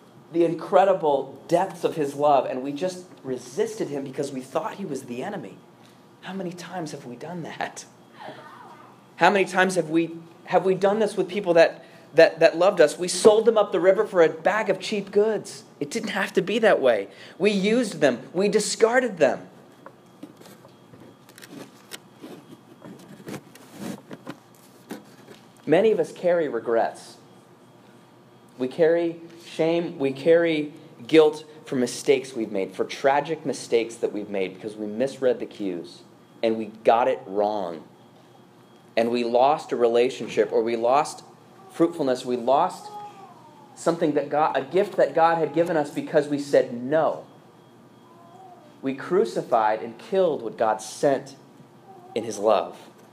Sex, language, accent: male, English, American